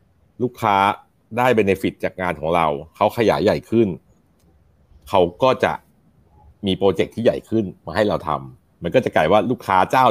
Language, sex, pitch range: Thai, male, 95-125 Hz